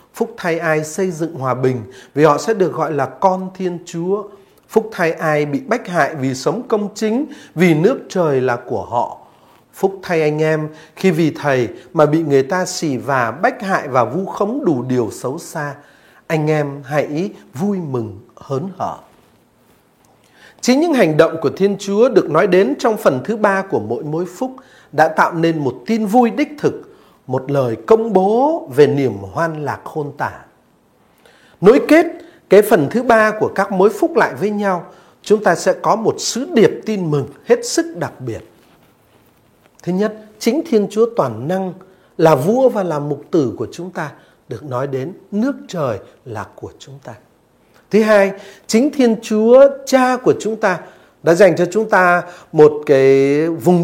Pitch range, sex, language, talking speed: 155-220 Hz, male, Vietnamese, 185 wpm